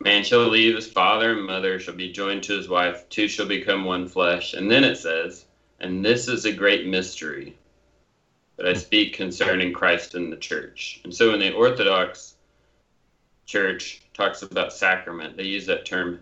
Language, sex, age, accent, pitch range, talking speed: English, male, 30-49, American, 90-110 Hz, 180 wpm